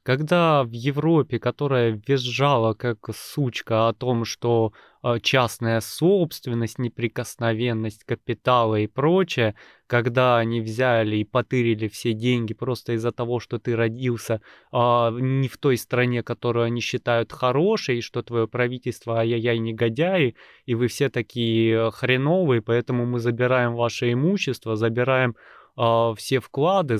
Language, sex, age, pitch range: Russian, male, 20-39, 110-125 Hz